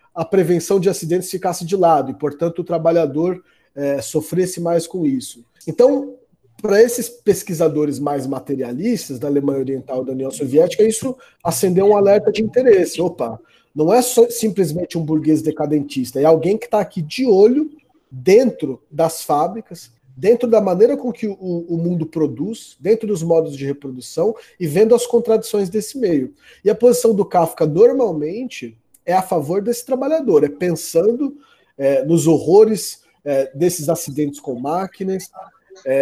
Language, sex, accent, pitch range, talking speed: Portuguese, male, Brazilian, 150-215 Hz, 160 wpm